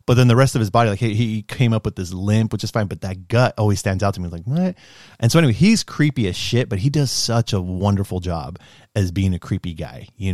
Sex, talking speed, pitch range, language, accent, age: male, 285 wpm, 90-115 Hz, English, American, 30-49